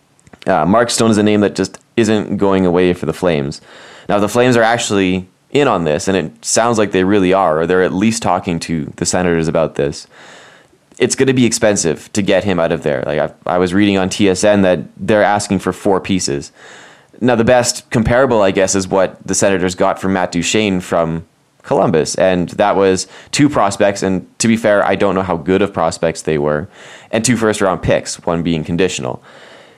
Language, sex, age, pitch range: English, male, 20-39, 90-110 Hz